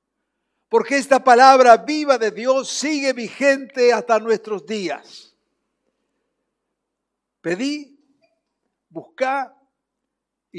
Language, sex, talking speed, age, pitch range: Spanish, male, 80 wpm, 60-79, 205-270 Hz